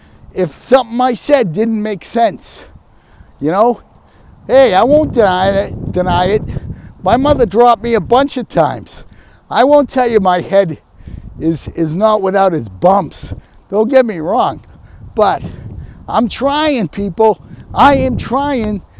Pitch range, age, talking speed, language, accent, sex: 180-275 Hz, 50-69, 145 wpm, English, American, male